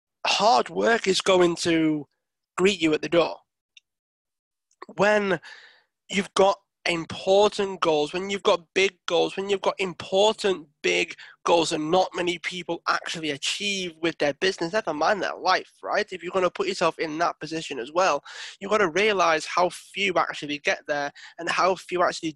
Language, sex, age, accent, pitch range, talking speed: English, male, 20-39, British, 150-185 Hz, 170 wpm